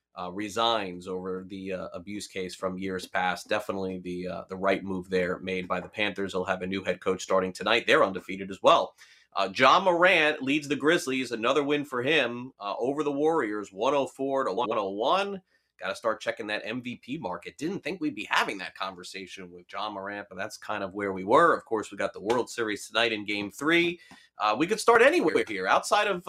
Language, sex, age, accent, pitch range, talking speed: English, male, 30-49, American, 100-140 Hz, 210 wpm